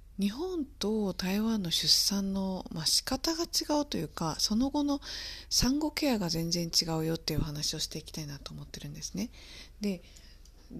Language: Japanese